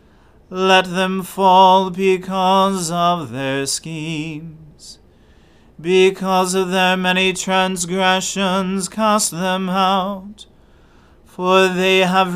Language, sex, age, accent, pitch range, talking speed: English, male, 40-59, American, 175-195 Hz, 85 wpm